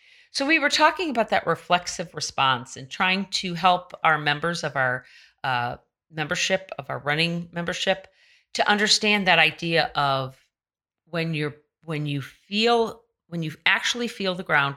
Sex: female